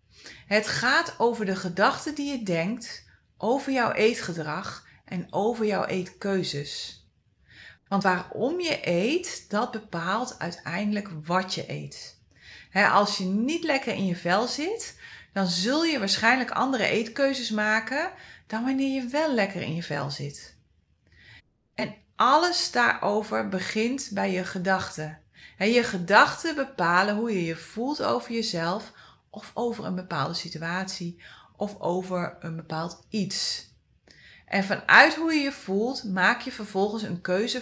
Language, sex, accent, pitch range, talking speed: Dutch, female, Dutch, 180-240 Hz, 135 wpm